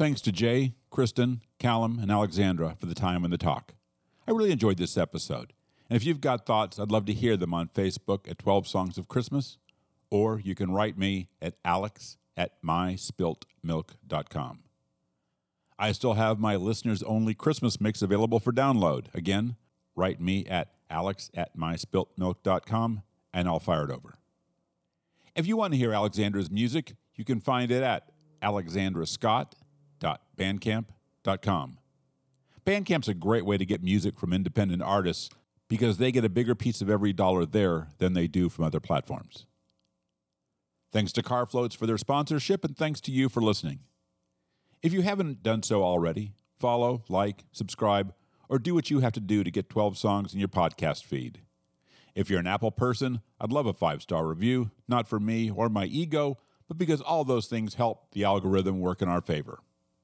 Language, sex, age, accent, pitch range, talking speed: English, male, 50-69, American, 90-120 Hz, 170 wpm